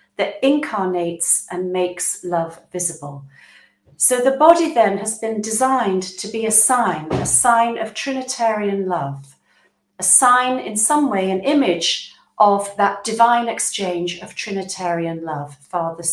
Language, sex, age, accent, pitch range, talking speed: English, female, 40-59, British, 175-240 Hz, 140 wpm